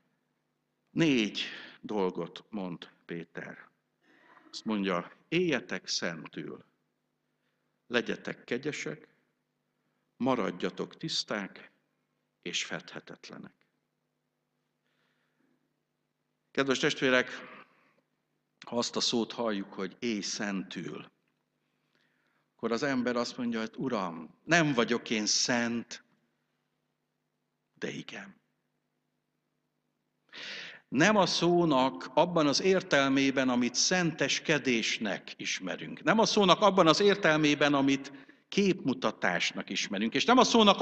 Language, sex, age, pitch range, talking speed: Hungarian, male, 60-79, 115-170 Hz, 85 wpm